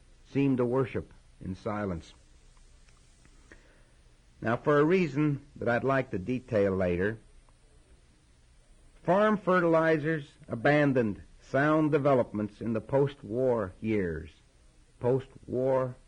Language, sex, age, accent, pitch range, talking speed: English, male, 60-79, American, 100-150 Hz, 95 wpm